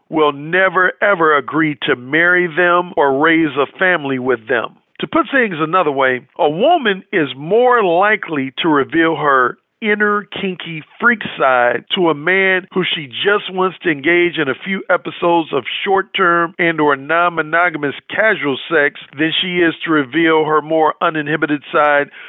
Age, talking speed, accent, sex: 50-69, 160 wpm, American, male